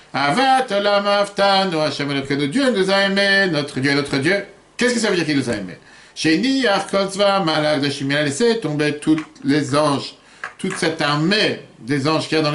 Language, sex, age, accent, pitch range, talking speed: French, male, 50-69, French, 145-205 Hz, 170 wpm